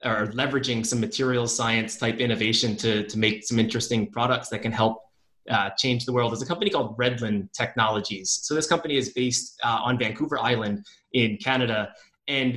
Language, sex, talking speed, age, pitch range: English, male, 180 wpm, 20-39, 115-135 Hz